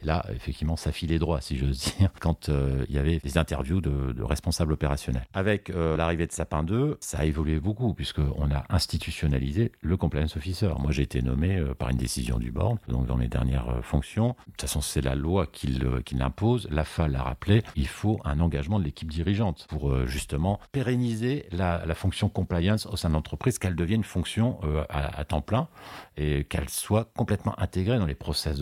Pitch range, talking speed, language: 75-100 Hz, 210 wpm, French